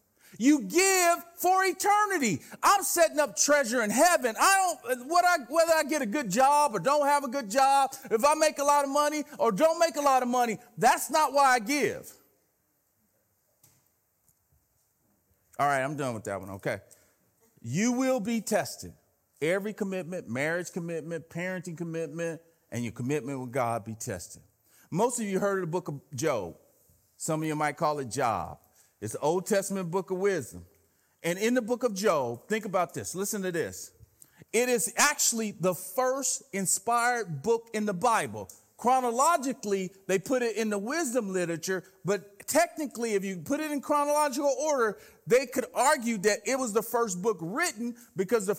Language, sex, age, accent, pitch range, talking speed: English, male, 40-59, American, 175-285 Hz, 180 wpm